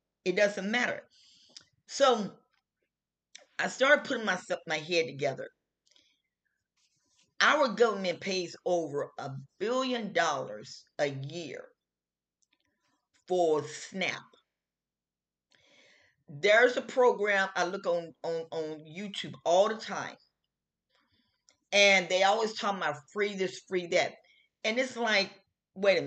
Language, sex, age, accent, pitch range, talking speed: English, female, 40-59, American, 165-220 Hz, 110 wpm